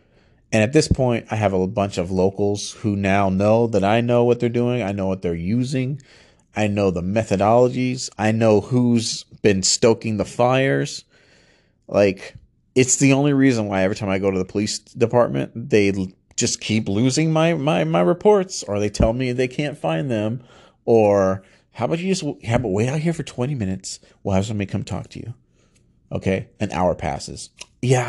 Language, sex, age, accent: English, male, 30-49, American